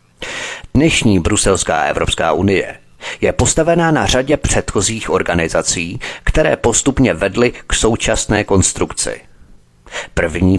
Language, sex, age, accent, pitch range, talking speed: Czech, male, 30-49, native, 95-115 Hz, 95 wpm